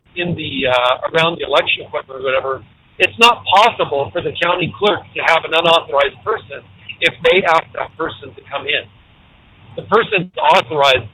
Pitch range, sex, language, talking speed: 130-180 Hz, male, English, 170 wpm